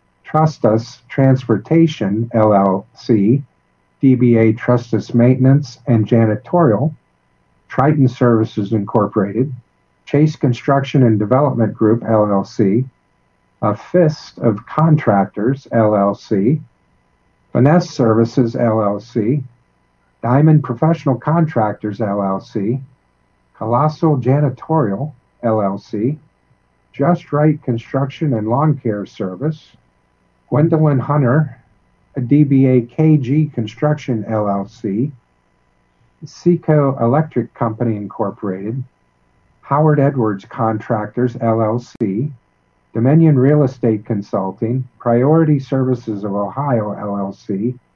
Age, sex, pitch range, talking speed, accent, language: 50-69, male, 110-145 Hz, 80 wpm, American, English